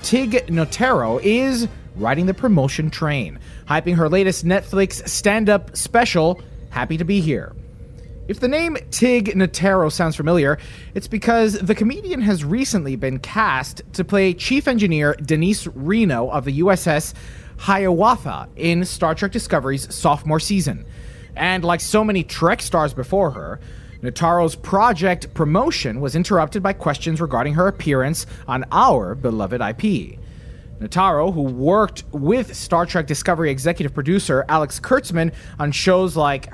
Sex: male